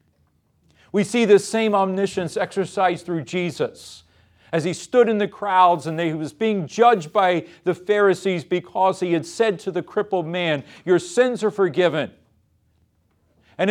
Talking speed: 160 wpm